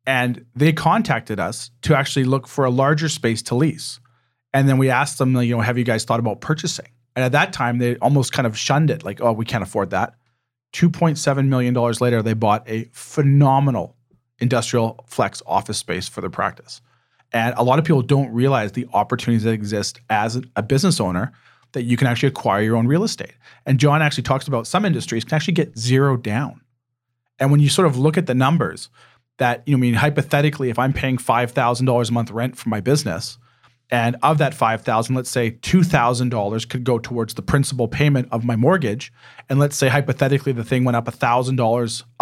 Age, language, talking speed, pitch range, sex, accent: 40-59, English, 200 wpm, 120-140 Hz, male, American